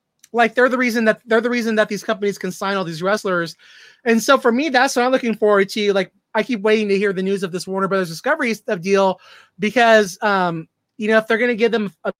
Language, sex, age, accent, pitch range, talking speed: English, male, 20-39, American, 195-225 Hz, 255 wpm